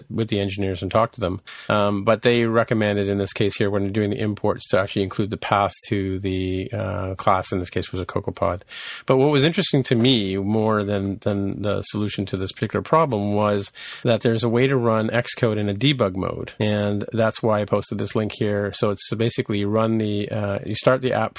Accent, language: American, English